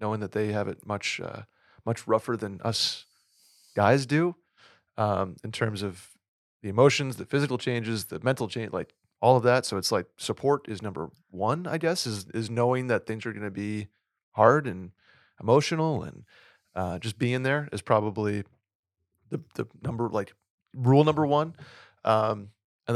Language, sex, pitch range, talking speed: English, male, 105-130 Hz, 175 wpm